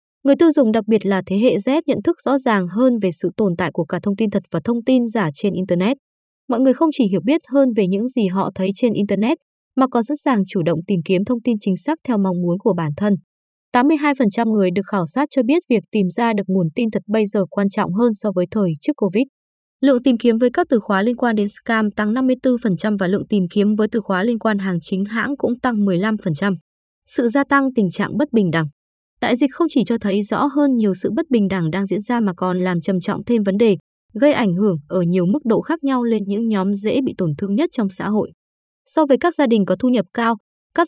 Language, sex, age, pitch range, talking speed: Vietnamese, female, 20-39, 190-255 Hz, 255 wpm